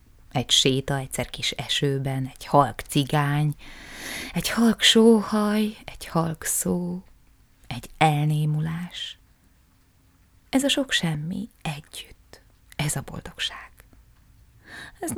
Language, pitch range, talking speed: Hungarian, 115-180 Hz, 100 wpm